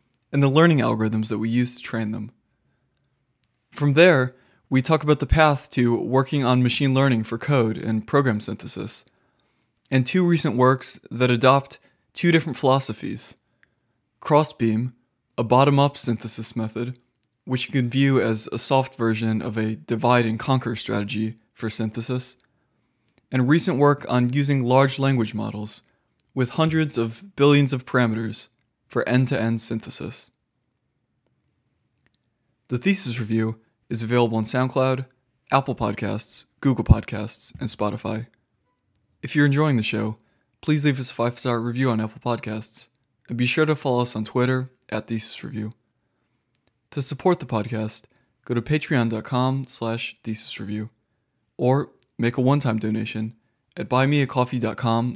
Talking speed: 140 wpm